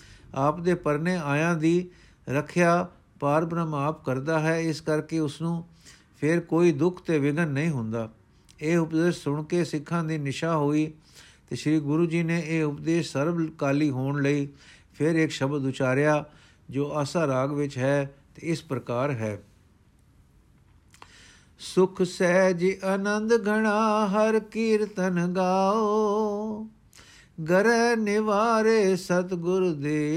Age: 50-69